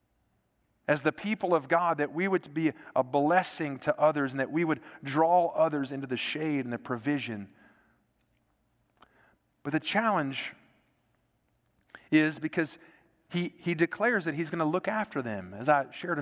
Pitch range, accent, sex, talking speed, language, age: 145-185 Hz, American, male, 160 wpm, English, 40-59